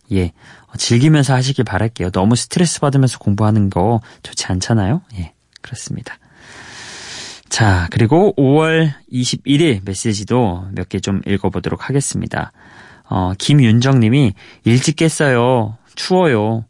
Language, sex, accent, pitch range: Korean, male, native, 110-145 Hz